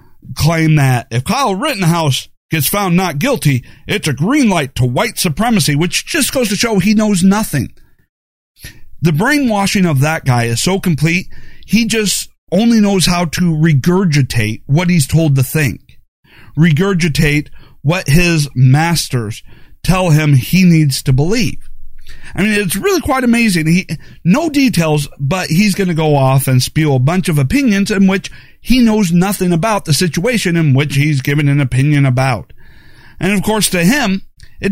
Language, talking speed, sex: English, 165 wpm, male